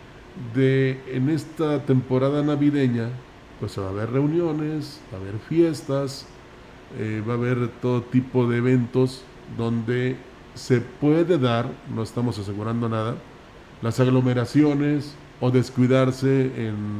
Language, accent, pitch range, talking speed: Spanish, Mexican, 120-145 Hz, 125 wpm